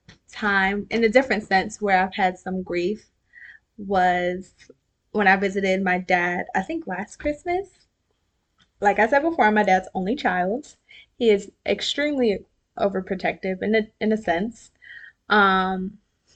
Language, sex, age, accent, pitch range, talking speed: English, female, 20-39, American, 190-230 Hz, 140 wpm